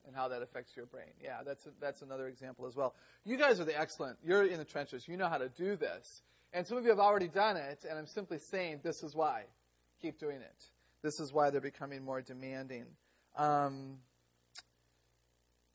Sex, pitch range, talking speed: male, 125-165 Hz, 210 wpm